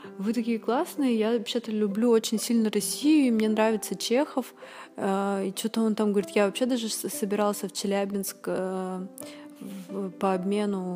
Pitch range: 195-240 Hz